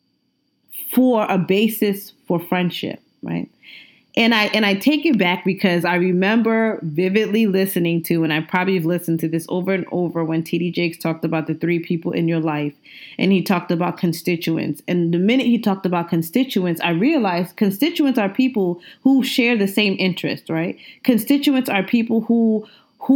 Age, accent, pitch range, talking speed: 20-39, American, 175-240 Hz, 175 wpm